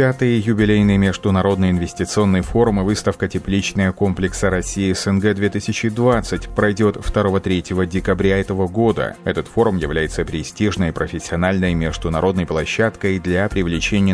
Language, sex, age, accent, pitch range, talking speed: Russian, male, 30-49, native, 90-105 Hz, 110 wpm